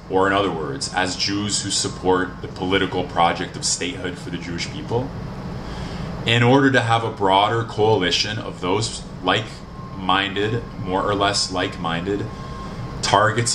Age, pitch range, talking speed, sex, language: 20-39, 95-120 Hz, 140 wpm, male, English